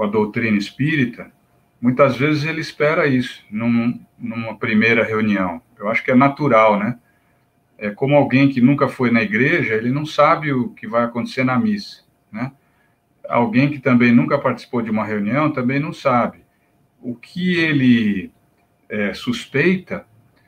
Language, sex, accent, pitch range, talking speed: Portuguese, male, Brazilian, 115-145 Hz, 150 wpm